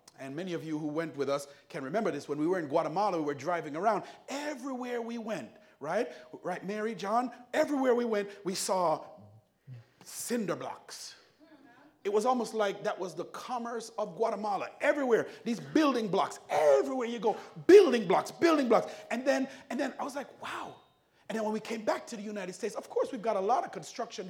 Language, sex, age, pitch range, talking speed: English, male, 30-49, 200-295 Hz, 200 wpm